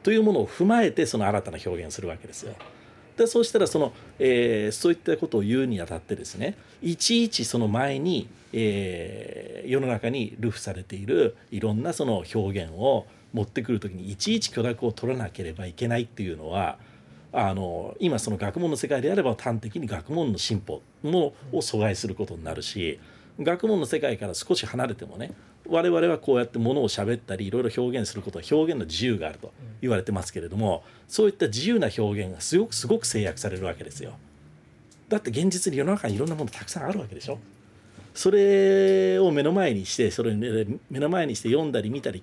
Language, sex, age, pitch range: Japanese, male, 40-59, 105-140 Hz